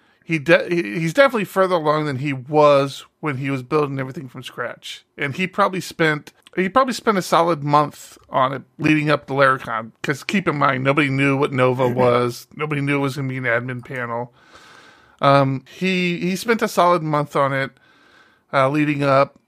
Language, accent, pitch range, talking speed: English, American, 140-170 Hz, 195 wpm